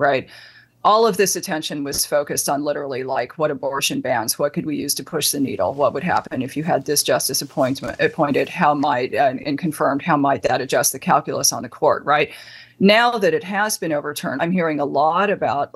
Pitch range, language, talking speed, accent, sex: 150-185 Hz, English, 215 wpm, American, female